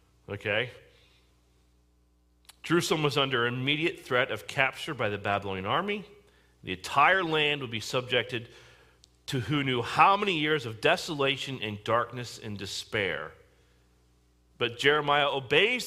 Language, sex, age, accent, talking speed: English, male, 40-59, American, 125 wpm